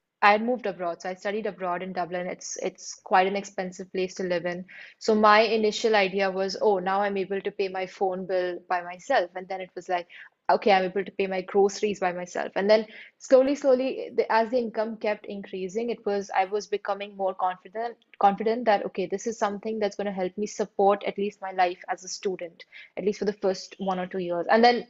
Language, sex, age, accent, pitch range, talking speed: English, female, 20-39, Indian, 185-215 Hz, 230 wpm